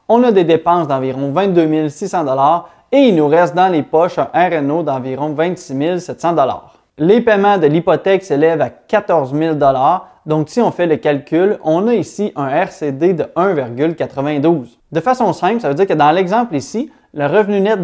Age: 30-49